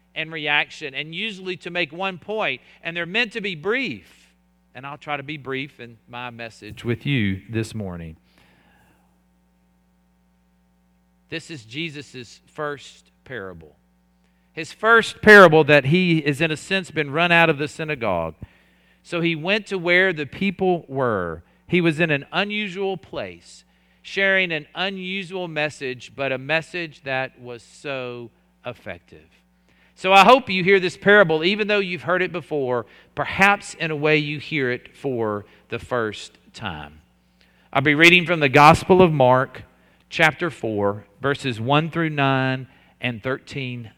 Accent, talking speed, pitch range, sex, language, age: American, 155 wpm, 100-165 Hz, male, English, 40-59